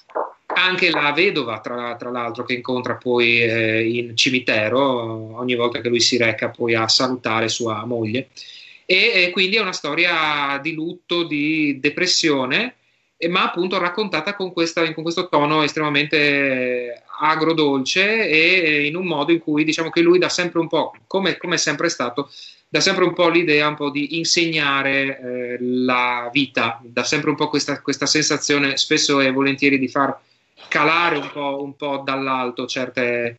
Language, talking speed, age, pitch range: Italian, 165 wpm, 30-49, 125-160 Hz